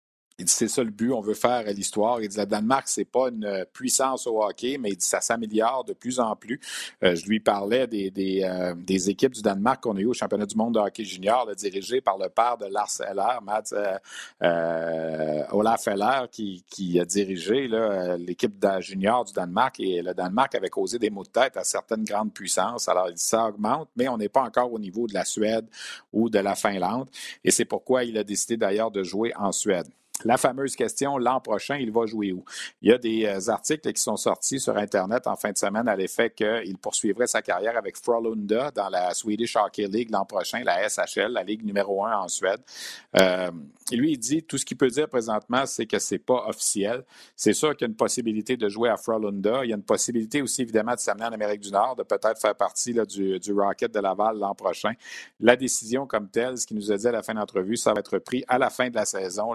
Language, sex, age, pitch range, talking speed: French, male, 50-69, 100-125 Hz, 240 wpm